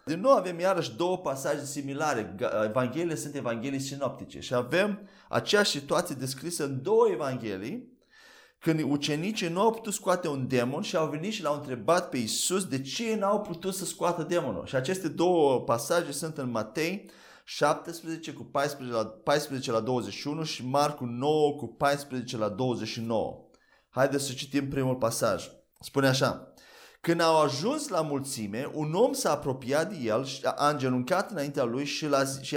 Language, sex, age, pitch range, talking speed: Romanian, male, 30-49, 125-165 Hz, 160 wpm